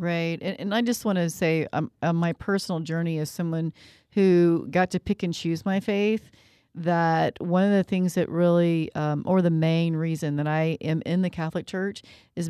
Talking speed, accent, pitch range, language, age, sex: 210 wpm, American, 160-185 Hz, English, 40-59, female